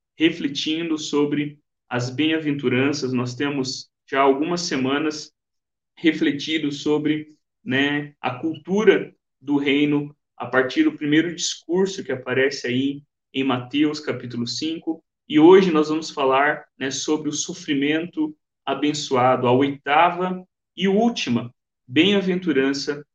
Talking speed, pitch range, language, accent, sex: 110 wpm, 135-160 Hz, Portuguese, Brazilian, male